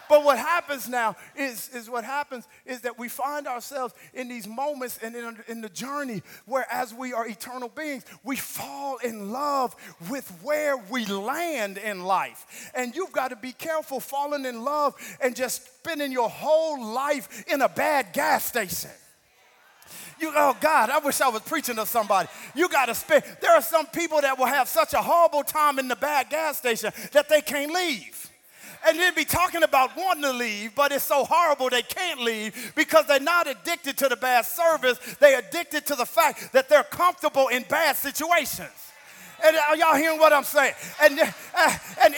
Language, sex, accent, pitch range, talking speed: English, male, American, 255-320 Hz, 190 wpm